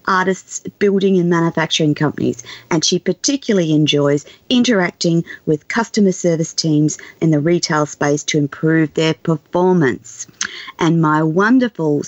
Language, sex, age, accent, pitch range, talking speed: English, female, 40-59, Australian, 155-200 Hz, 125 wpm